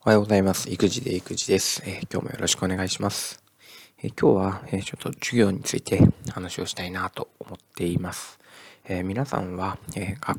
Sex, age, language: male, 20-39, Japanese